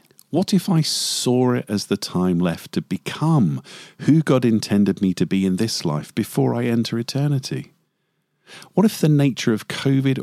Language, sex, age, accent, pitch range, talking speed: English, male, 50-69, British, 100-145 Hz, 175 wpm